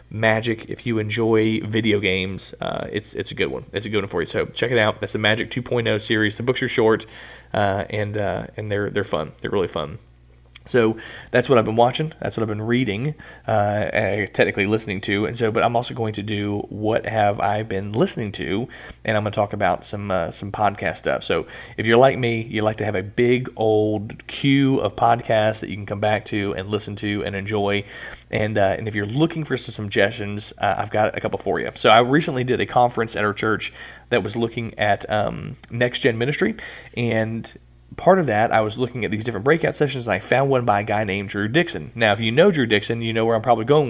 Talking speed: 240 wpm